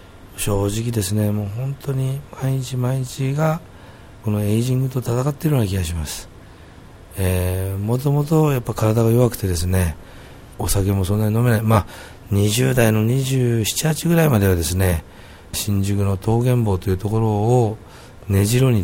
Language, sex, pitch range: Japanese, male, 95-115 Hz